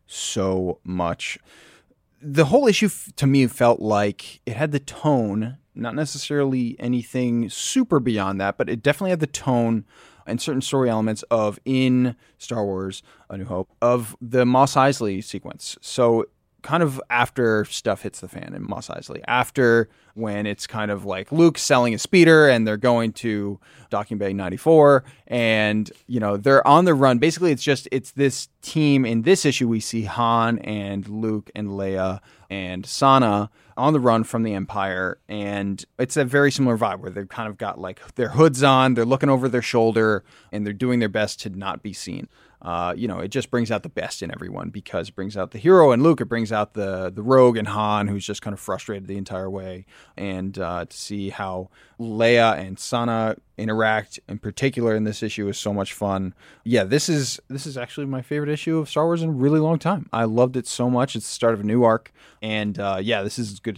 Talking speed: 205 wpm